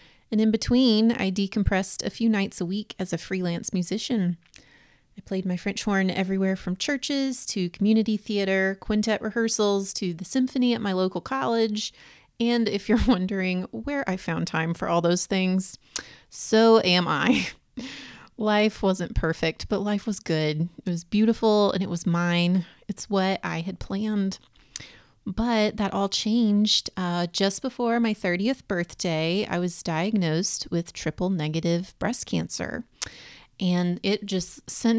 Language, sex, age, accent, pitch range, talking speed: English, female, 30-49, American, 180-220 Hz, 155 wpm